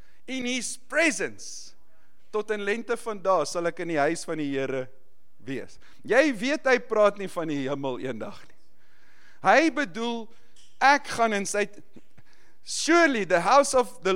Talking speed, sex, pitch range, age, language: 155 wpm, male, 170-245 Hz, 50-69, English